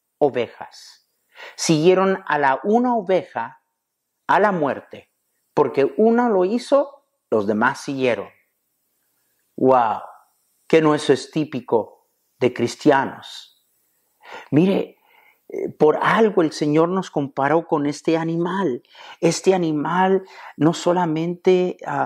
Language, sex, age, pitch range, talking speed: Spanish, male, 50-69, 130-185 Hz, 105 wpm